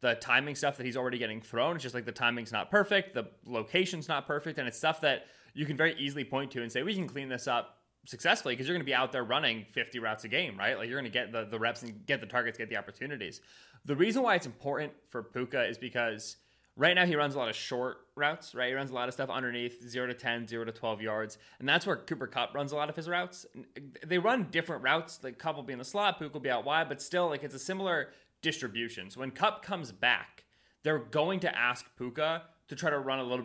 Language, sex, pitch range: English, male, 120-155 Hz